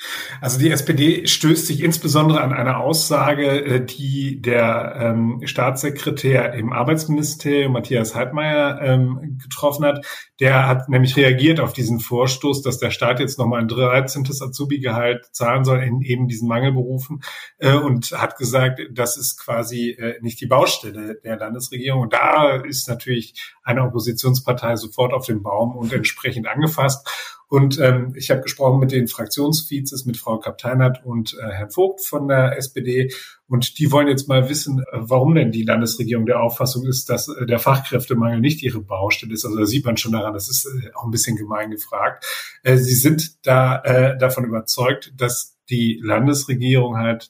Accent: German